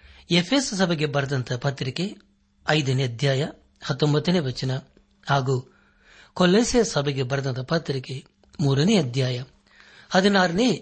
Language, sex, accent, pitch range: Kannada, male, native, 130-160 Hz